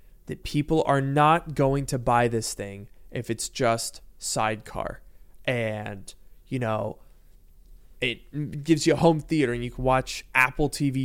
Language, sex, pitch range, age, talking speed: English, male, 115-165 Hz, 20-39, 150 wpm